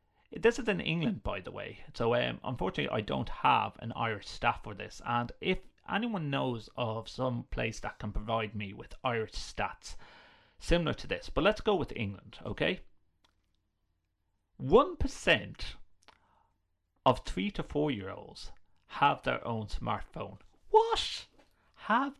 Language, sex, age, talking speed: English, male, 30-49, 140 wpm